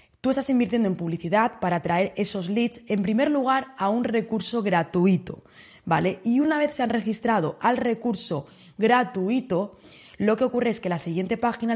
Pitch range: 180-240 Hz